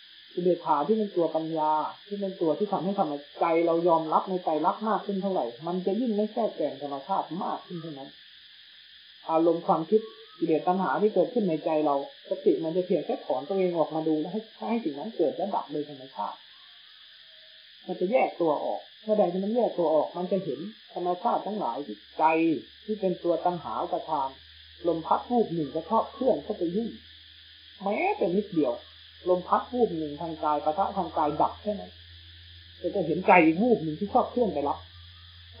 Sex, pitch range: male, 150-200 Hz